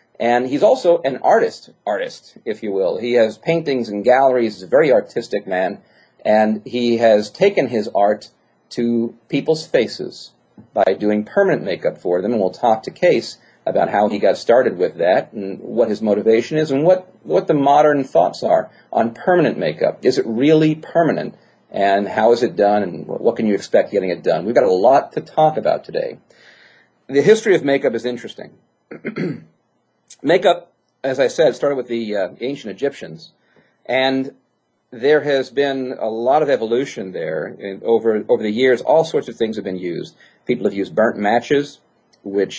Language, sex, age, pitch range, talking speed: English, male, 40-59, 105-145 Hz, 180 wpm